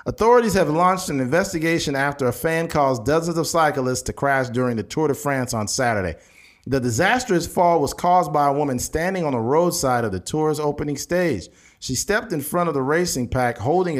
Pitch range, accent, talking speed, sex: 120-160 Hz, American, 200 wpm, male